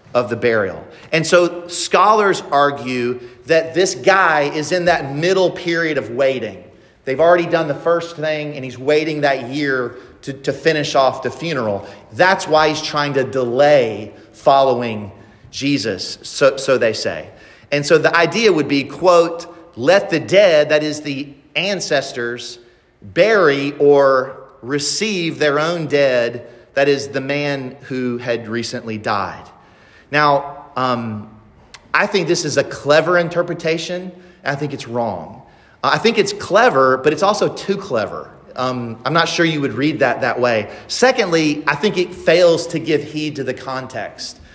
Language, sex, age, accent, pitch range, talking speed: English, male, 40-59, American, 130-170 Hz, 160 wpm